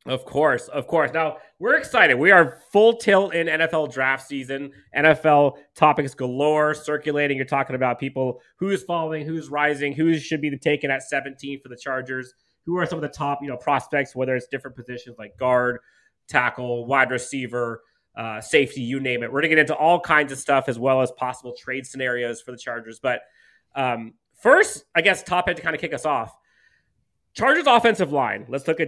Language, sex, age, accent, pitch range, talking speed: English, male, 30-49, American, 125-160 Hz, 200 wpm